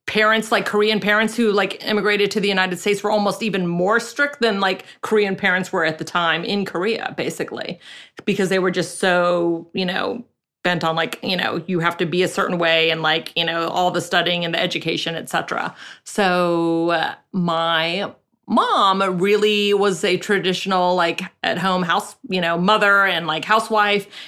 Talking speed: 185 wpm